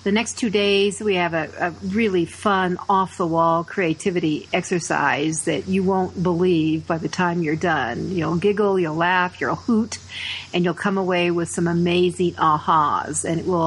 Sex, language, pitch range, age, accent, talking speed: female, English, 165-195 Hz, 50-69, American, 175 wpm